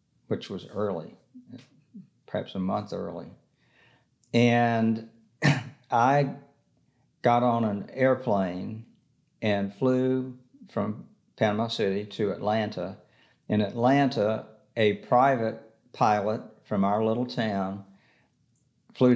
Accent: American